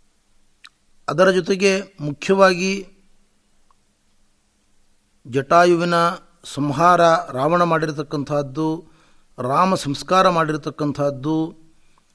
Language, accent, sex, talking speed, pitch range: Kannada, native, male, 50 wpm, 140-175 Hz